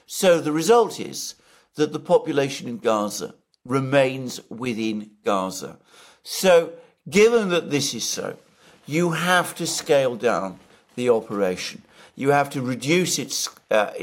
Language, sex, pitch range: English, male, 115-160 Hz